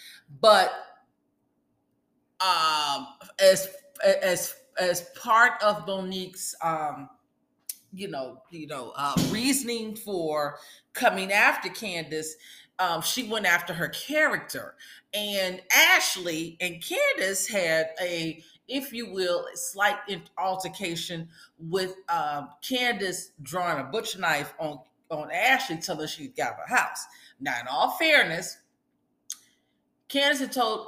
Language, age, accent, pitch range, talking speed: English, 40-59, American, 150-205 Hz, 115 wpm